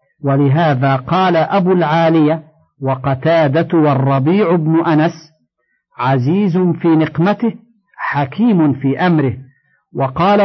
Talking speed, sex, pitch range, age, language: 85 wpm, male, 145-185 Hz, 50-69, Arabic